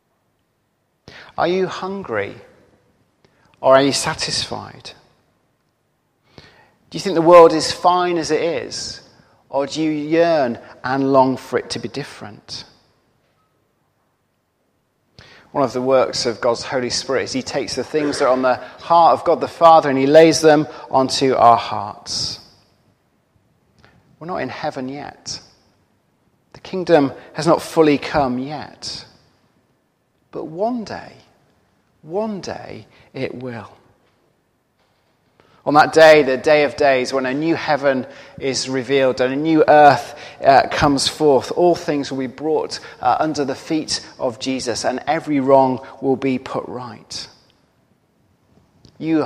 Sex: male